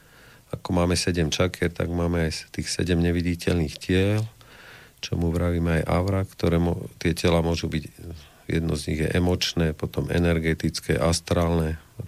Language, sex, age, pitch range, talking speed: Slovak, male, 50-69, 80-90 Hz, 150 wpm